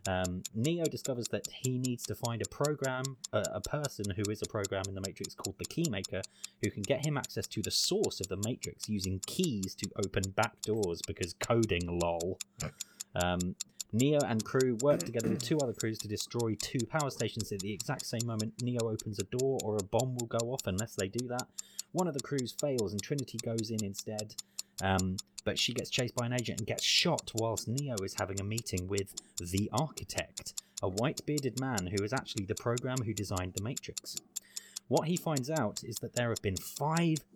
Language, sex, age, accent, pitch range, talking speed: English, male, 30-49, British, 100-125 Hz, 210 wpm